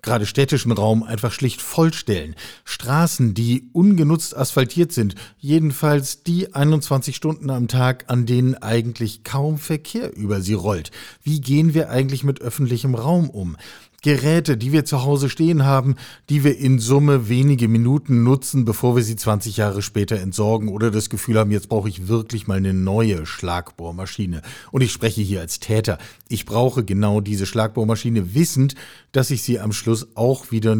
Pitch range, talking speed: 105-140 Hz, 165 wpm